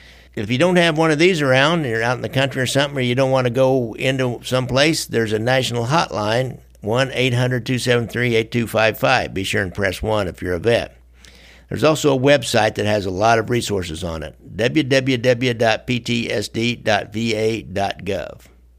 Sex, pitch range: male, 95-130 Hz